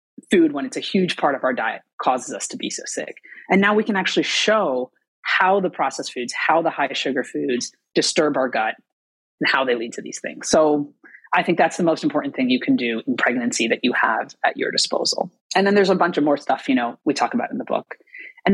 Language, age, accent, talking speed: English, 30-49, American, 245 wpm